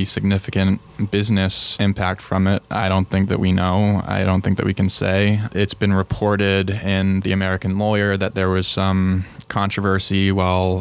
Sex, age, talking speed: male, 20-39, 170 wpm